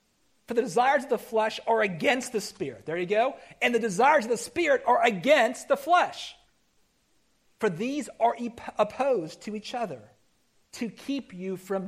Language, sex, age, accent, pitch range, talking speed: English, male, 40-59, American, 195-275 Hz, 170 wpm